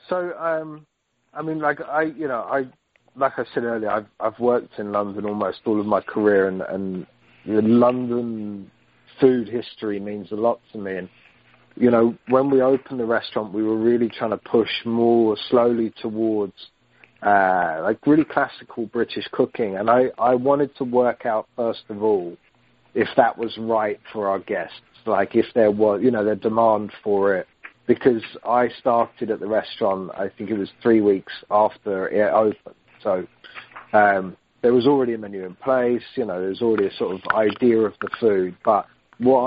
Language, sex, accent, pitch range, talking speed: English, male, British, 105-125 Hz, 185 wpm